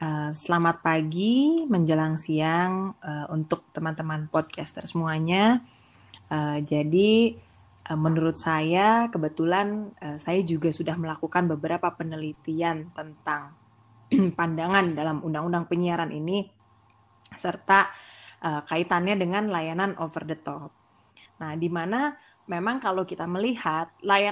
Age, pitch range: 20-39, 160-195 Hz